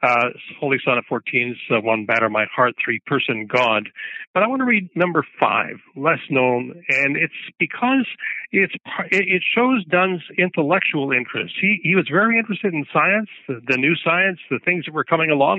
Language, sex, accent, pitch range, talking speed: English, male, American, 130-180 Hz, 190 wpm